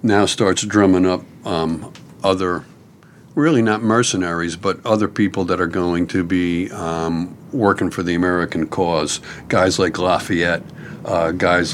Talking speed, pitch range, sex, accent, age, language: 145 wpm, 85-95 Hz, male, American, 50-69, English